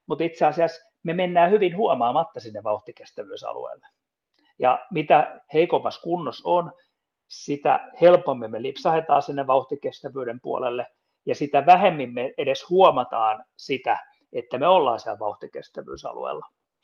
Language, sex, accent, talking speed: Finnish, male, native, 120 wpm